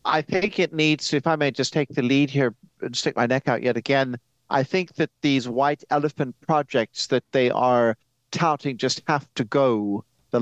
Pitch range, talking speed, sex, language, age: 125-160 Hz, 200 wpm, male, English, 60-79